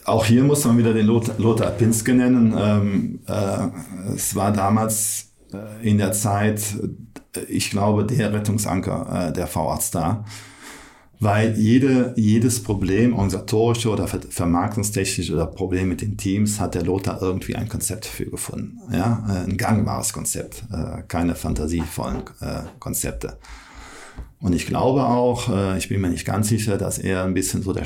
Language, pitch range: German, 90-110 Hz